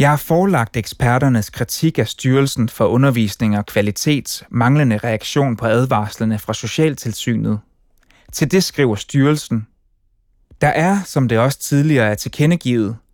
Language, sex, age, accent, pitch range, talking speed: Danish, male, 30-49, native, 110-145 Hz, 130 wpm